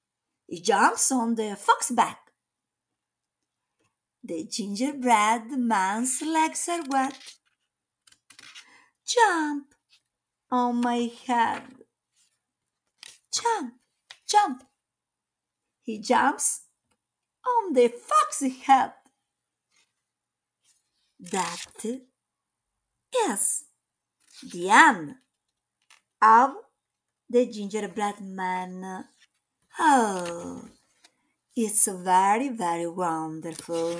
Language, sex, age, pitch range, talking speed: Italian, female, 50-69, 200-305 Hz, 65 wpm